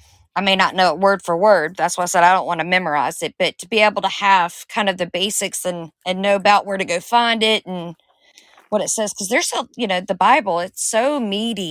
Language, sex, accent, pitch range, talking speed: English, female, American, 185-225 Hz, 260 wpm